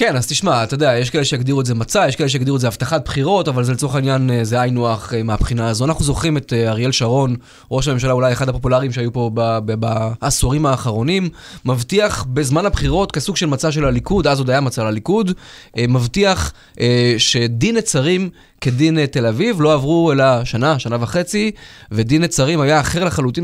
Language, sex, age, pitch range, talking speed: Hebrew, male, 20-39, 125-170 Hz, 185 wpm